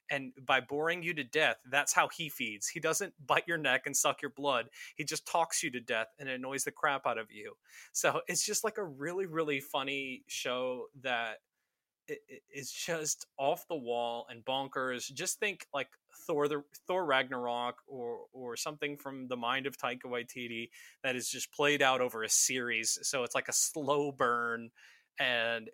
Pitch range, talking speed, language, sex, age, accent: 125-150 Hz, 190 wpm, English, male, 20-39, American